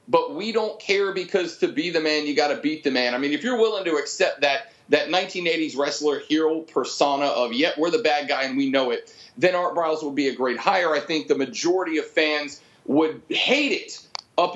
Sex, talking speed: male, 235 wpm